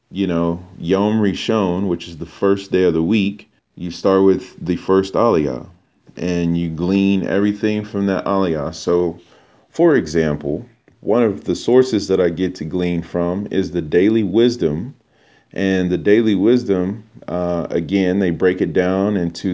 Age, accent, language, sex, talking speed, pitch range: 40-59, American, English, male, 165 wpm, 85-105 Hz